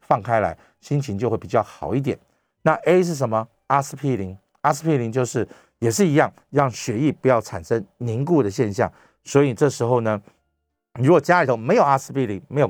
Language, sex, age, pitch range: Chinese, male, 50-69, 100-145 Hz